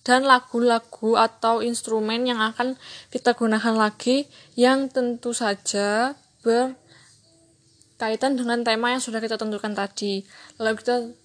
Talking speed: 115 wpm